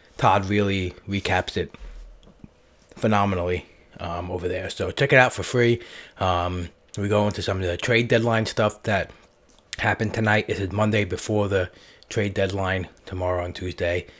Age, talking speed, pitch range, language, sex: 20-39, 150 wpm, 90-105 Hz, English, male